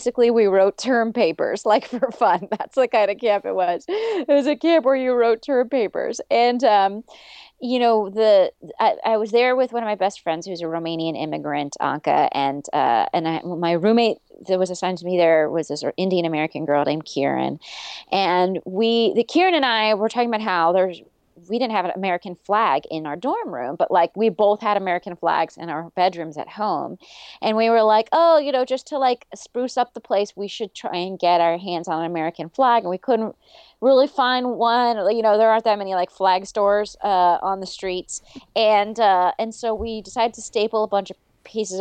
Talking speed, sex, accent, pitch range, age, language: 220 wpm, female, American, 175-230 Hz, 30-49, English